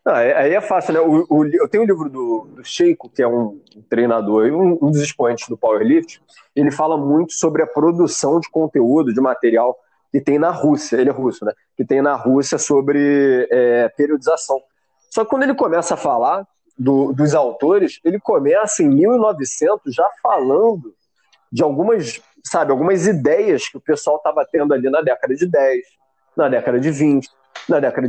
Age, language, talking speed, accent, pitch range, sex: 20-39, Portuguese, 185 wpm, Brazilian, 135-195 Hz, male